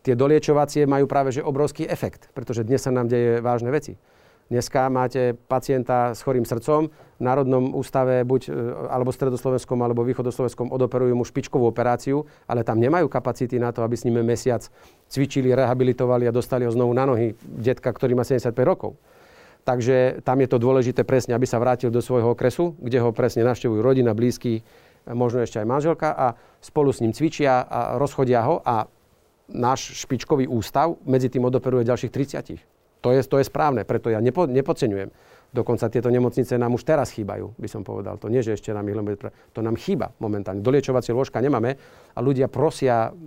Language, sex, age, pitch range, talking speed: Slovak, male, 40-59, 120-135 Hz, 185 wpm